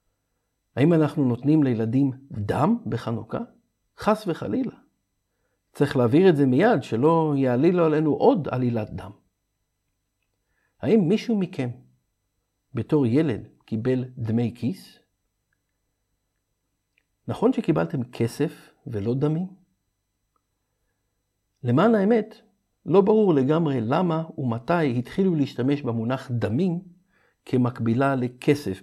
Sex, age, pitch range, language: male, 60-79, 115-165 Hz, Hebrew